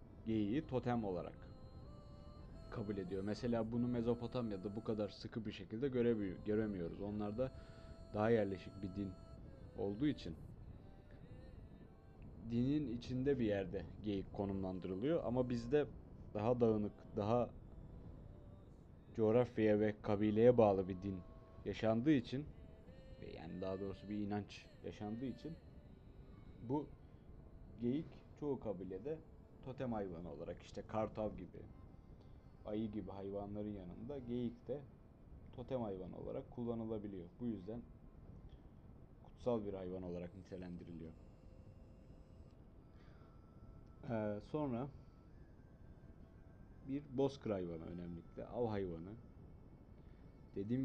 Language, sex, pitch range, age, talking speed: Turkish, male, 95-120 Hz, 30-49, 100 wpm